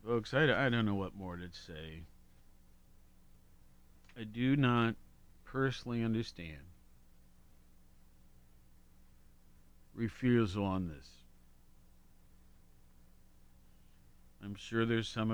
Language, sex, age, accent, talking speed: English, male, 50-69, American, 80 wpm